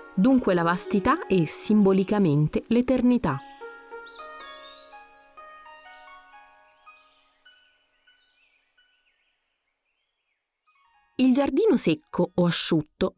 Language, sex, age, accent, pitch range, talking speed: Italian, female, 30-49, native, 175-255 Hz, 50 wpm